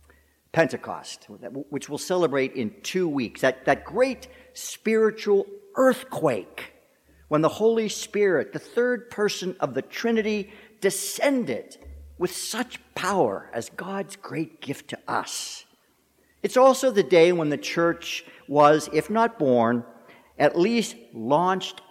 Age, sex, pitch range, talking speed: 50-69, male, 135-210 Hz, 125 wpm